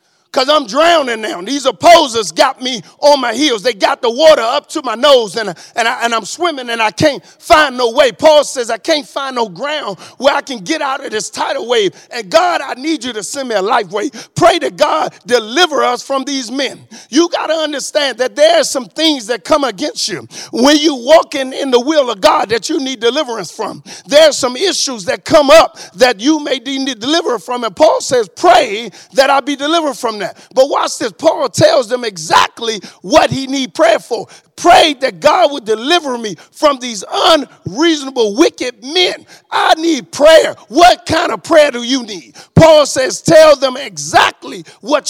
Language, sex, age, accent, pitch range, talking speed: English, male, 50-69, American, 250-320 Hz, 210 wpm